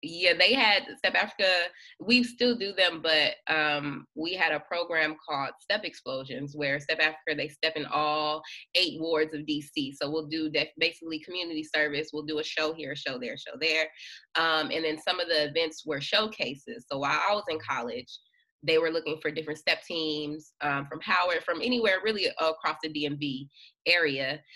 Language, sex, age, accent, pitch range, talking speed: English, female, 20-39, American, 150-180 Hz, 195 wpm